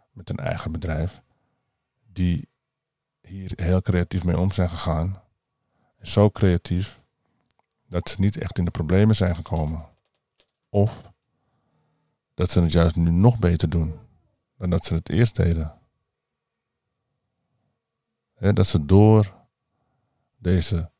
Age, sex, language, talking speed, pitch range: 50-69, male, Dutch, 120 wpm, 85-105 Hz